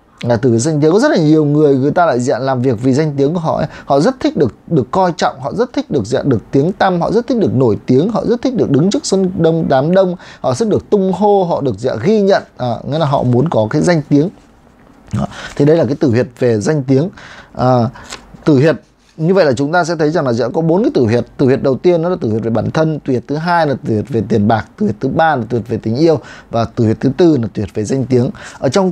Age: 20-39